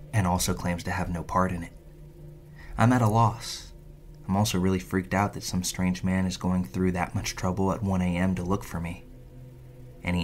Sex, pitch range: male, 90-125 Hz